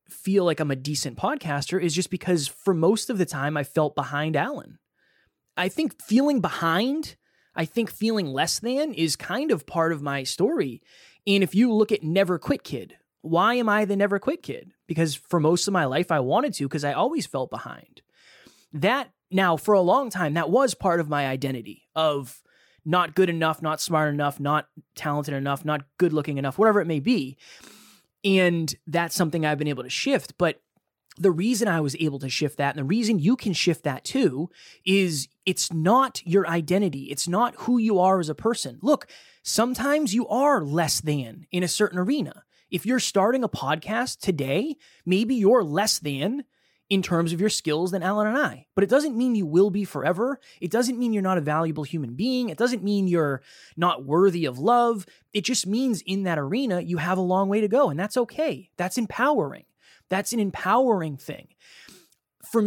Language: English